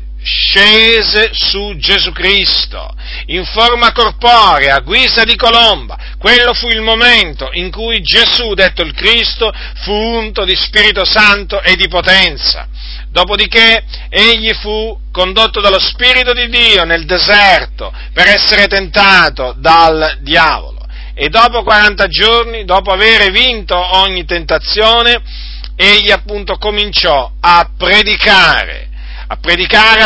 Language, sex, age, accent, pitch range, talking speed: Italian, male, 50-69, native, 175-225 Hz, 120 wpm